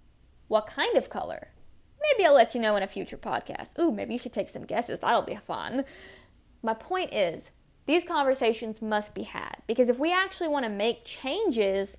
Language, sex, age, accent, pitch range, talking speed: English, female, 20-39, American, 215-270 Hz, 195 wpm